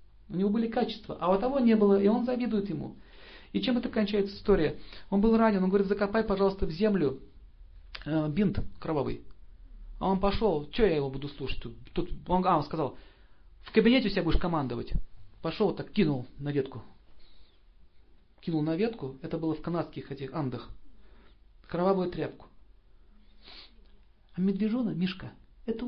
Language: Russian